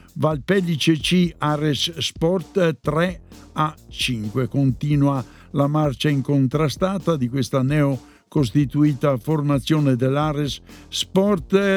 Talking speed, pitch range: 90 wpm, 135-160 Hz